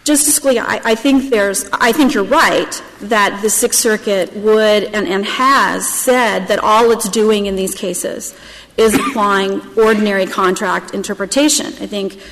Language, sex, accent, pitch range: English, female, American, 195-245 Hz